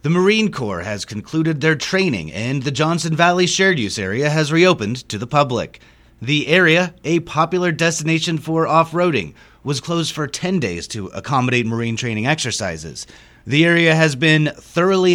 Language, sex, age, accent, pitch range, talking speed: English, male, 30-49, American, 120-175 Hz, 160 wpm